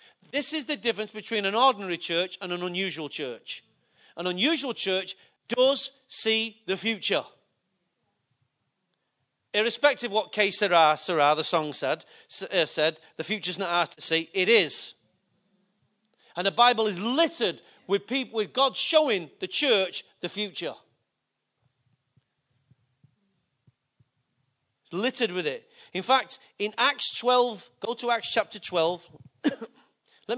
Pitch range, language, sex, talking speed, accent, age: 175-250 Hz, English, male, 130 wpm, British, 40-59